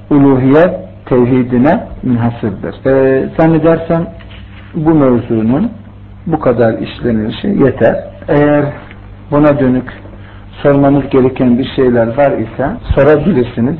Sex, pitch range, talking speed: male, 120-145 Hz, 90 wpm